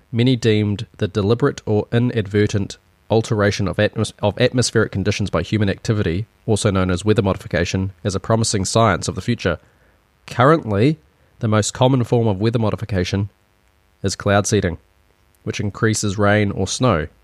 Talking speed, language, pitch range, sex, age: 145 wpm, English, 95-115 Hz, male, 20-39